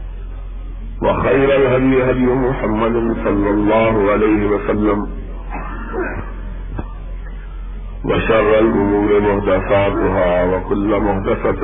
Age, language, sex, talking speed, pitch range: 50-69, Urdu, male, 65 wpm, 85-105 Hz